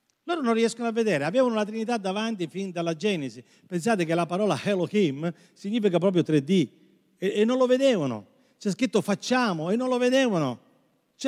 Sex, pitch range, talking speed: male, 145-205 Hz, 175 wpm